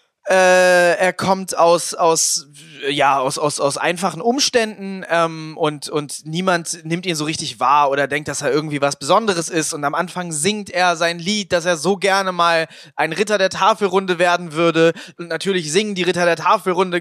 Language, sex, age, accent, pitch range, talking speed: German, male, 20-39, German, 165-200 Hz, 190 wpm